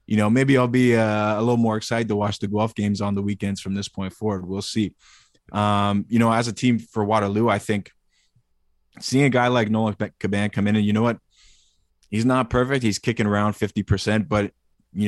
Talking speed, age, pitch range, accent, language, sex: 220 wpm, 20-39, 100-110 Hz, American, English, male